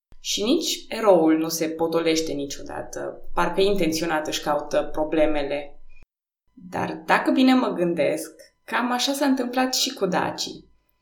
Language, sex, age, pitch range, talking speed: Romanian, female, 20-39, 165-205 Hz, 130 wpm